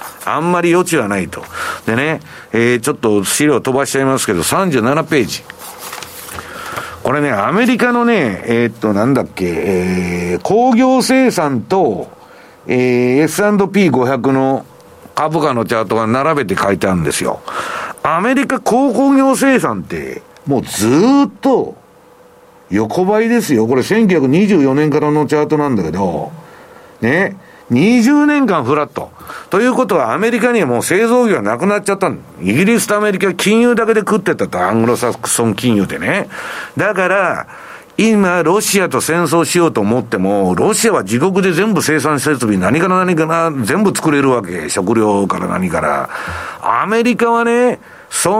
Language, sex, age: Japanese, male, 50-69